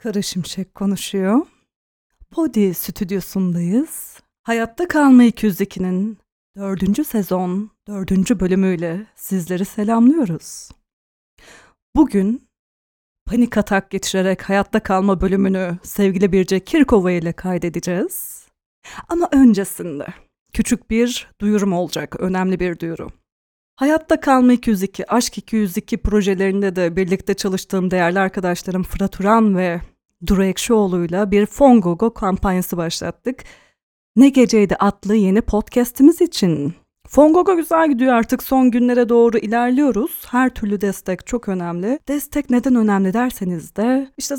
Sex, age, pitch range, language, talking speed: female, 30-49, 190-245 Hz, Turkish, 110 wpm